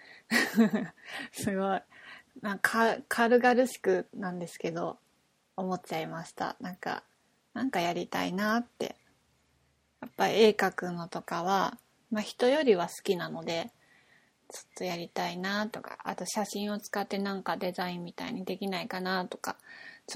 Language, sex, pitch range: Japanese, female, 190-240 Hz